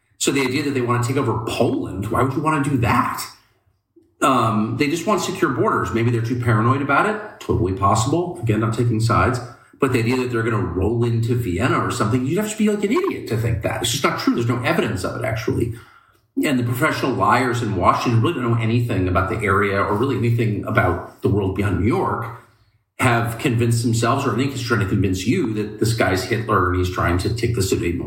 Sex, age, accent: male, 40-59, American